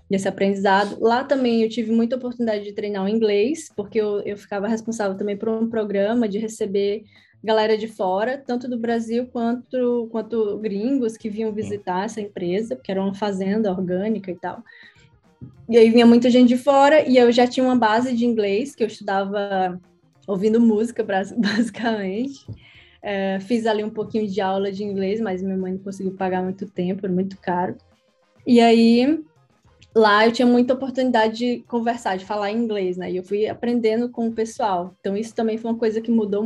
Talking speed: 185 wpm